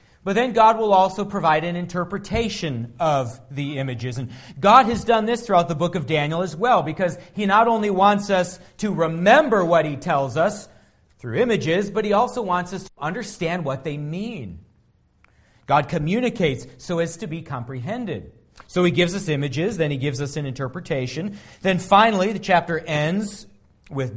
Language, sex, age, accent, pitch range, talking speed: English, male, 40-59, American, 120-175 Hz, 175 wpm